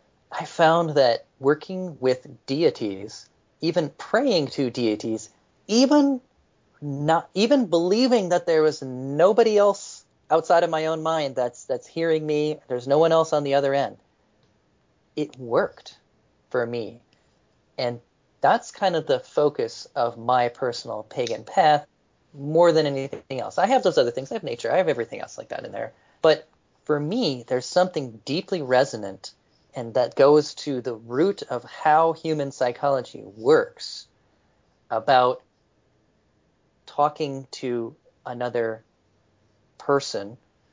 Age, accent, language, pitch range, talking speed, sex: 30-49, American, English, 120-165 Hz, 140 wpm, male